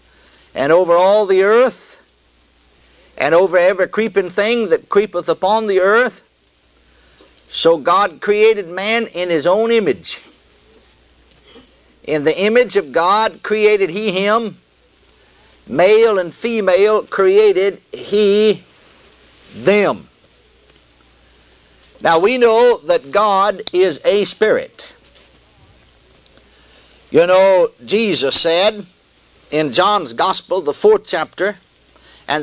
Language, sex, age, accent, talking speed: English, male, 60-79, American, 105 wpm